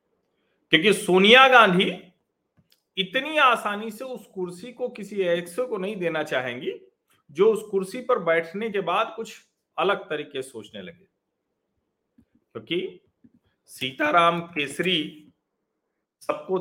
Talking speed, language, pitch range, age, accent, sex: 115 wpm, Hindi, 145-220 Hz, 40-59, native, male